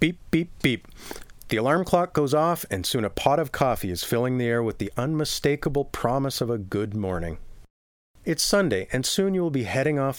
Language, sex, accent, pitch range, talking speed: English, male, American, 100-150 Hz, 205 wpm